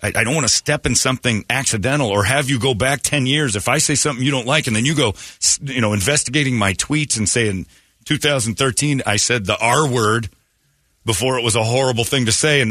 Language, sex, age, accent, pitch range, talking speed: English, male, 40-59, American, 105-145 Hz, 230 wpm